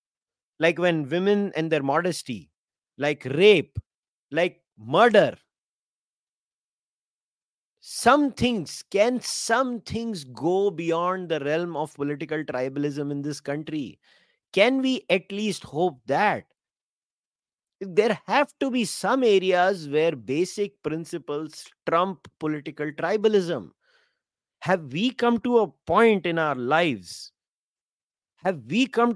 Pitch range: 150-210 Hz